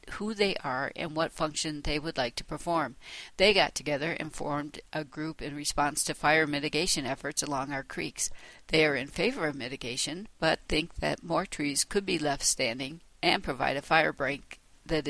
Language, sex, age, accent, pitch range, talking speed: English, female, 60-79, American, 145-175 Hz, 190 wpm